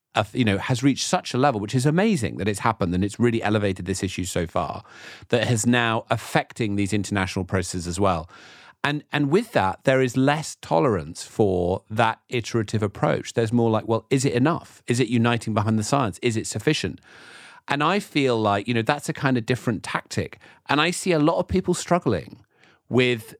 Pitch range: 105-140 Hz